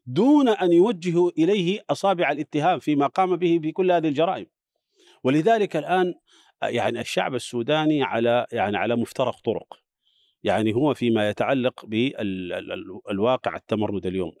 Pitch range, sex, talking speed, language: 120-165 Hz, male, 120 wpm, Arabic